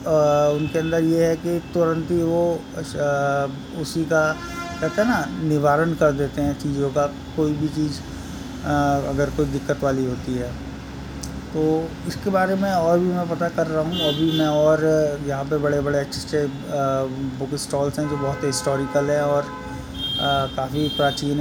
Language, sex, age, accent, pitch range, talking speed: Hindi, male, 20-39, native, 140-160 Hz, 170 wpm